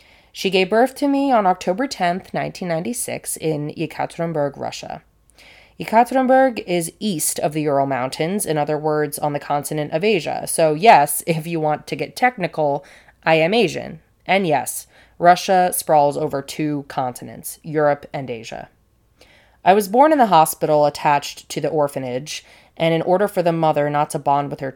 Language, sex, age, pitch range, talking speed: English, female, 20-39, 145-175 Hz, 165 wpm